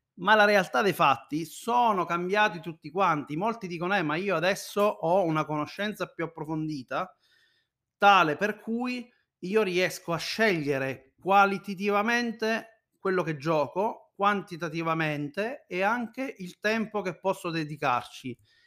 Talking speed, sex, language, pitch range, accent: 125 wpm, male, Italian, 145-200 Hz, native